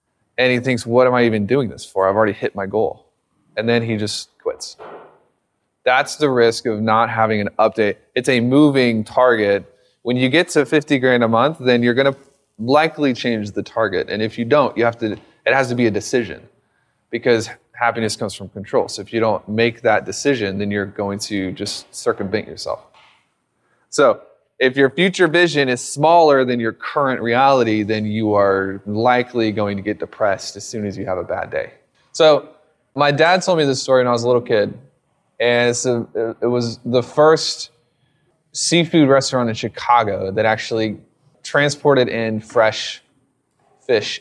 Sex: male